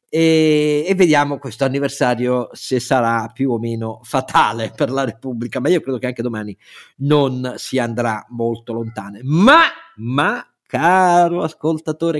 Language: Italian